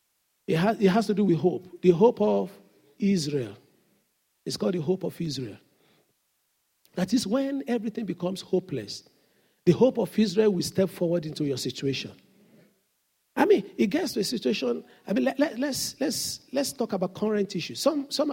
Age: 50-69